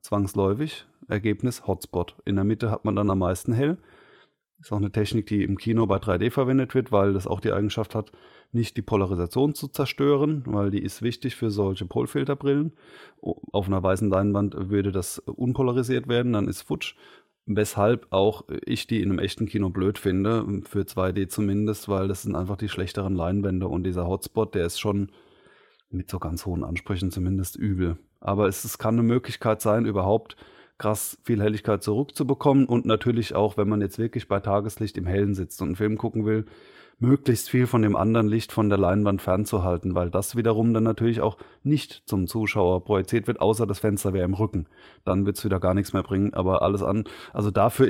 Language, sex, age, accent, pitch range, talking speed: German, male, 30-49, German, 95-115 Hz, 195 wpm